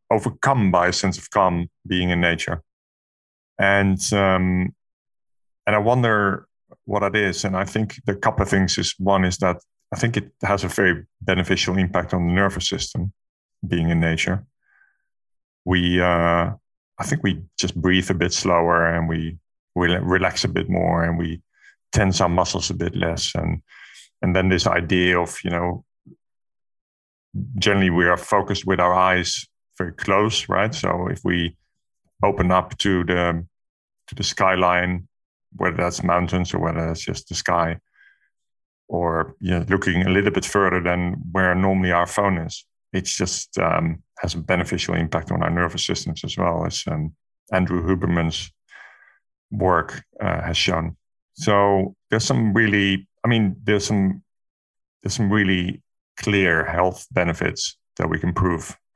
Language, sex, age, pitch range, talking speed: English, male, 30-49, 85-100 Hz, 160 wpm